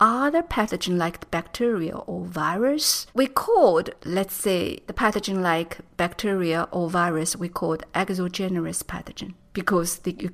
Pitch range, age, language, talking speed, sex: 170-210 Hz, 50-69, English, 120 wpm, female